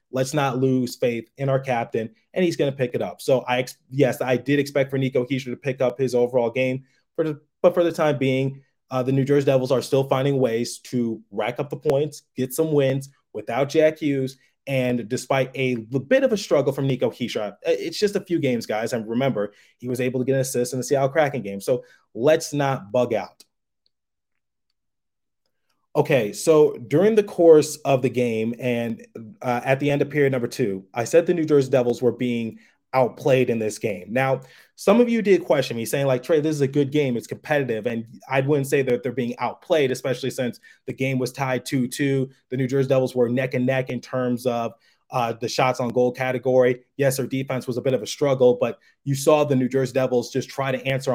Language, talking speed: English, 225 wpm